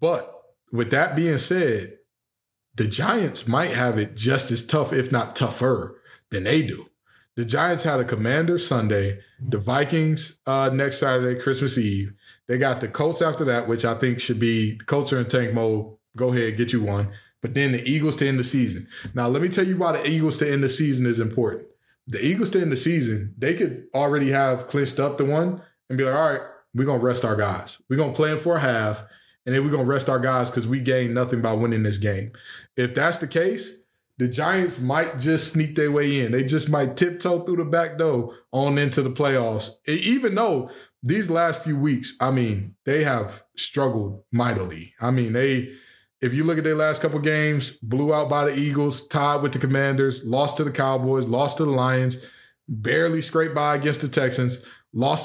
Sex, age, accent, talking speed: male, 20-39, American, 215 wpm